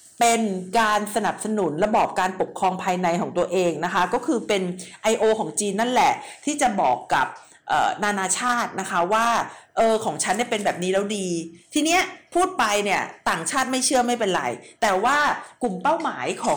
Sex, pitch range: female, 190-270 Hz